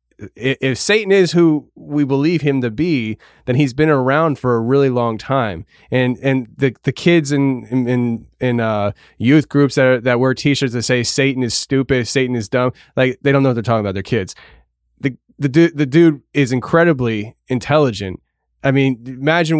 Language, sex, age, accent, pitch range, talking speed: English, male, 20-39, American, 115-140 Hz, 195 wpm